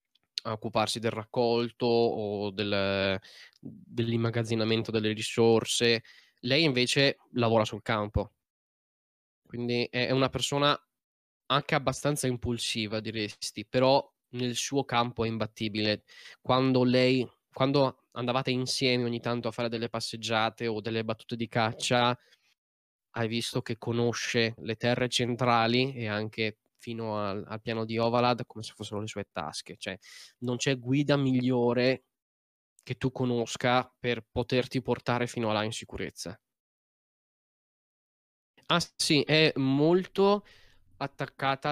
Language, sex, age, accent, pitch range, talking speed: Italian, male, 10-29, native, 115-130 Hz, 125 wpm